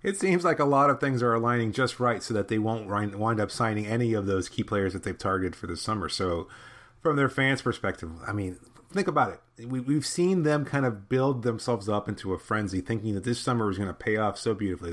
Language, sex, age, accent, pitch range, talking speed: English, male, 30-49, American, 100-120 Hz, 245 wpm